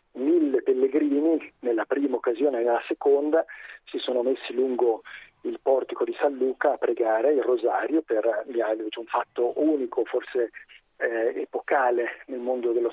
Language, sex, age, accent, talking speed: Italian, male, 40-59, native, 150 wpm